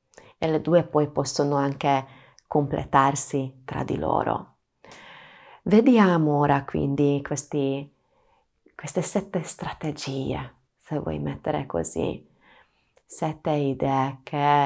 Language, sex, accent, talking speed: Italian, female, native, 95 wpm